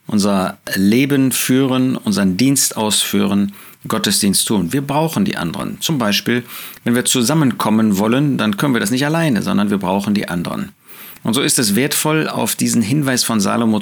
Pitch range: 110-145 Hz